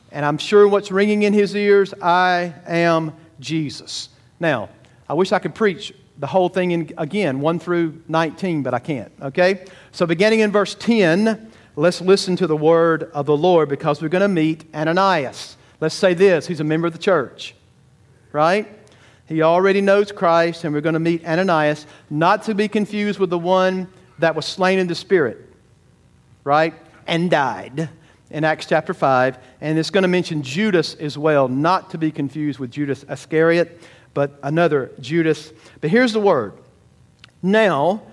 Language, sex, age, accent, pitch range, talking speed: English, male, 50-69, American, 145-190 Hz, 175 wpm